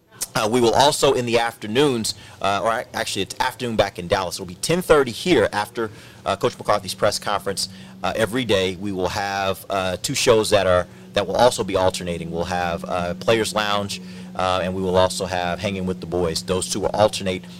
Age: 30-49